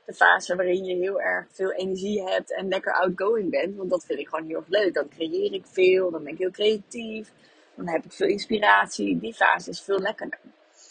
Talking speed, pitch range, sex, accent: 215 wpm, 175-205 Hz, female, Dutch